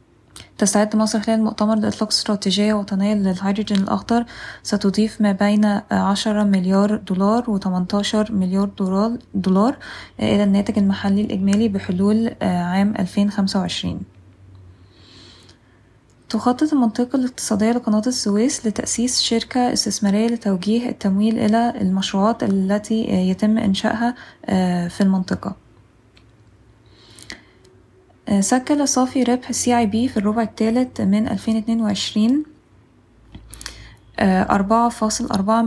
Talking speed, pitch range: 85 wpm, 190-220 Hz